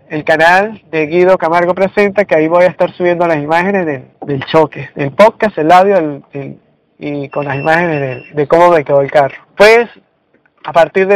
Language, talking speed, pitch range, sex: Spanish, 195 wpm, 165-200 Hz, male